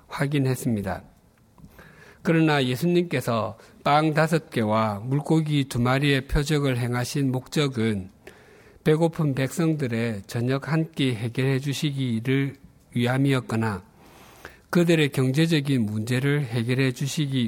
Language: Korean